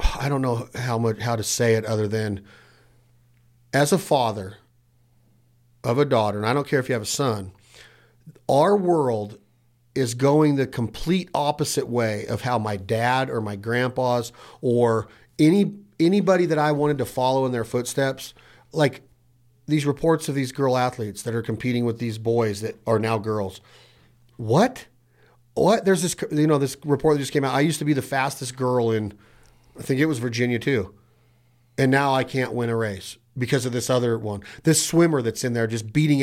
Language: English